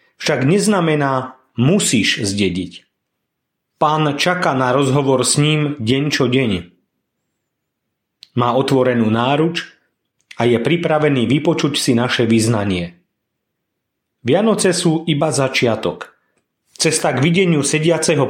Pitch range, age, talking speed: 125-160 Hz, 40-59, 100 wpm